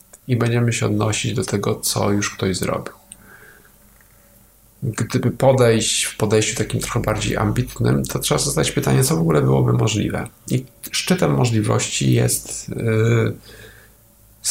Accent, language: native, Polish